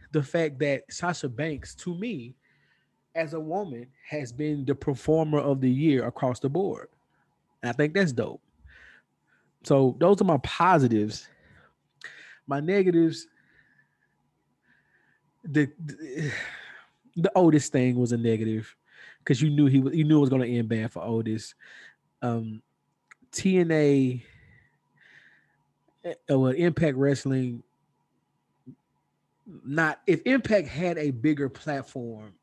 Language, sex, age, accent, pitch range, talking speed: English, male, 20-39, American, 125-160 Hz, 120 wpm